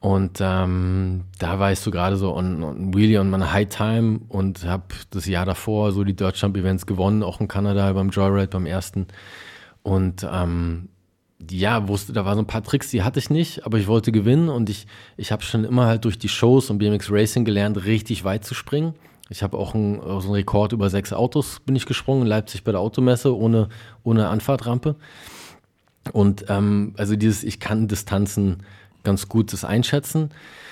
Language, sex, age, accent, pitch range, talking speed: German, male, 20-39, German, 95-115 Hz, 195 wpm